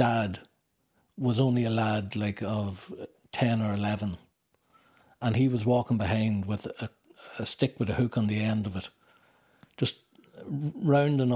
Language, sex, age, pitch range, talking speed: English, male, 60-79, 105-125 Hz, 155 wpm